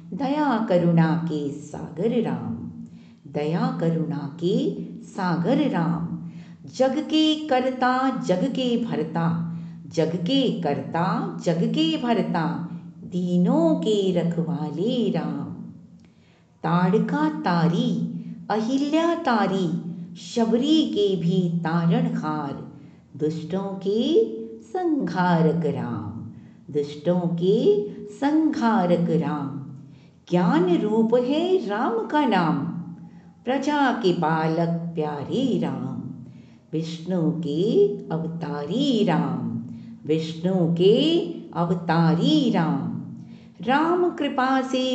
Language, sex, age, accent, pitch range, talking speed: Hindi, female, 50-69, native, 165-235 Hz, 90 wpm